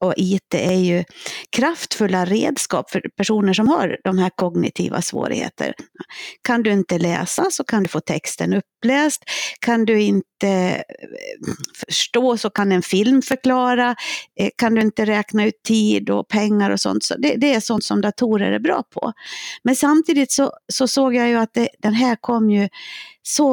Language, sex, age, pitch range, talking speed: Swedish, female, 60-79, 180-250 Hz, 165 wpm